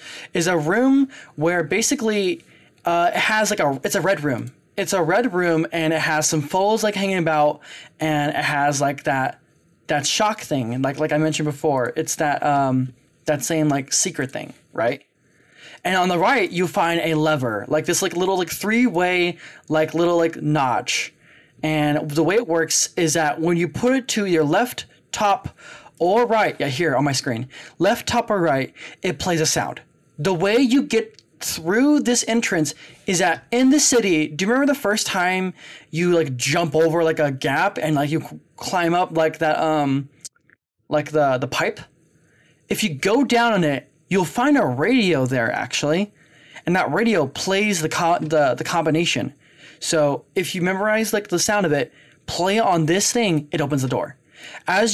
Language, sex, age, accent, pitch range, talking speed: English, male, 20-39, American, 150-195 Hz, 190 wpm